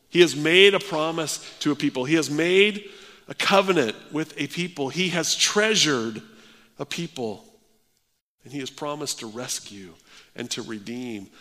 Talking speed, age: 160 wpm, 50-69